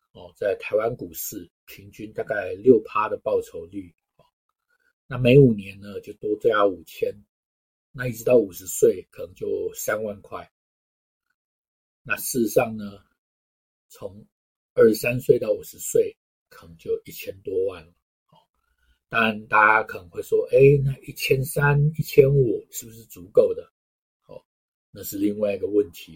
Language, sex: Chinese, male